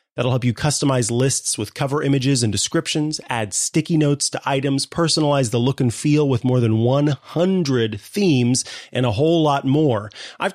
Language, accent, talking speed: English, American, 175 wpm